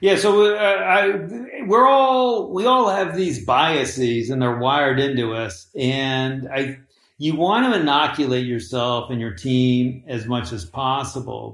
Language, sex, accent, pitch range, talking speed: English, male, American, 120-155 Hz, 155 wpm